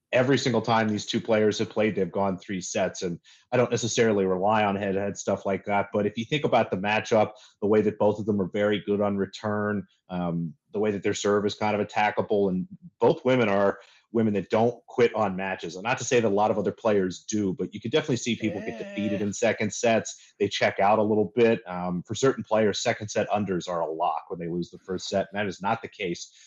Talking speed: 250 wpm